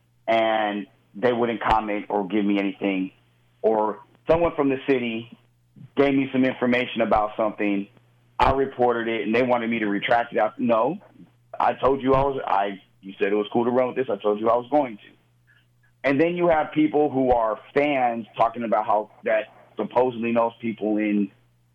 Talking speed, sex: 195 wpm, male